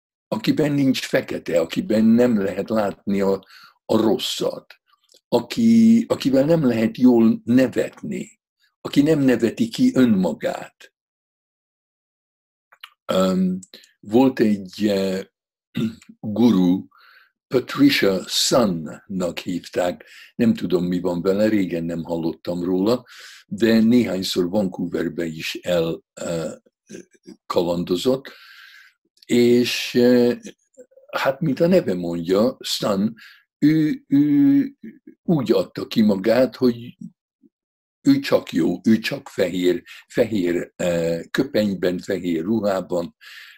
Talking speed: 95 wpm